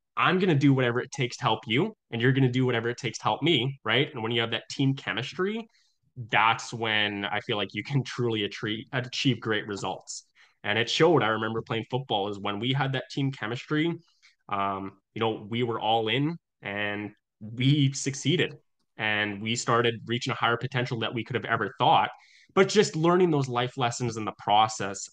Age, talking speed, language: 10-29, 205 wpm, English